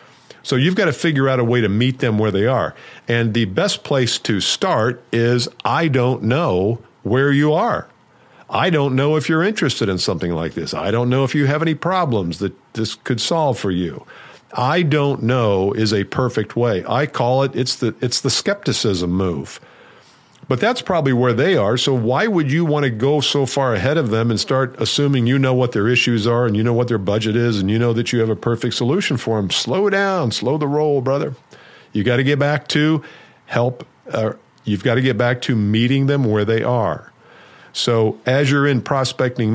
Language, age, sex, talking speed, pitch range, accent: English, 50-69, male, 215 wpm, 110-135 Hz, American